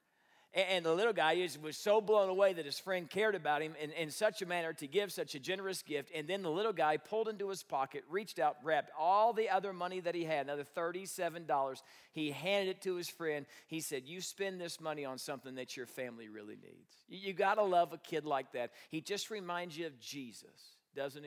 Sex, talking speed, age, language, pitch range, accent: male, 230 wpm, 40-59, English, 150-190 Hz, American